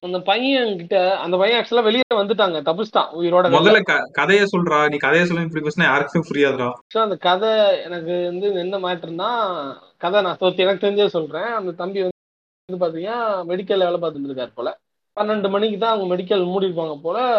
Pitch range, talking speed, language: 170-210 Hz, 65 wpm, Tamil